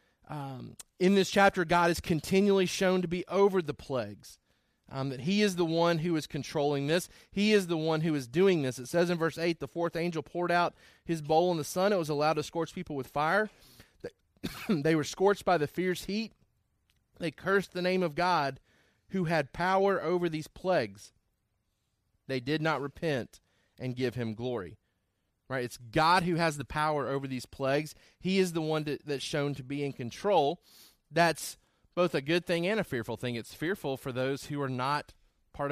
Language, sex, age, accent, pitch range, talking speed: English, male, 30-49, American, 135-175 Hz, 200 wpm